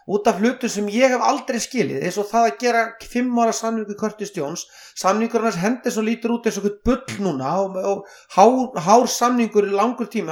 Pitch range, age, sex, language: 190-230 Hz, 40-59, male, English